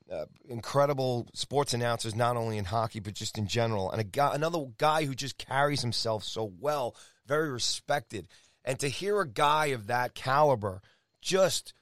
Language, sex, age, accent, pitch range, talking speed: English, male, 30-49, American, 105-135 Hz, 175 wpm